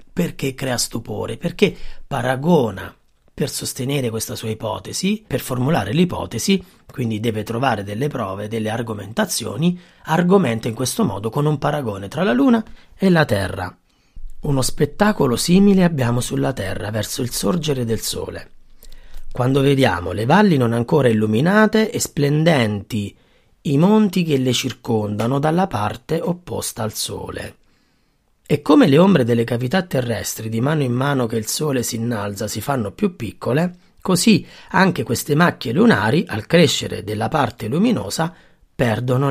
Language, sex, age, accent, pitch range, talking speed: Italian, male, 30-49, native, 115-160 Hz, 145 wpm